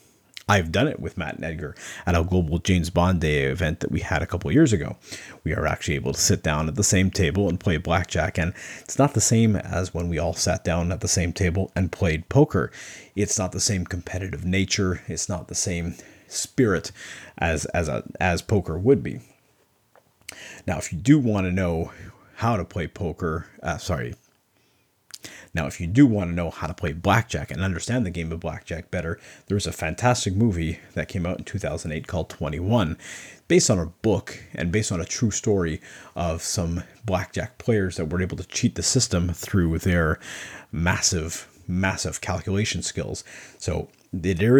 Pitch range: 85-105 Hz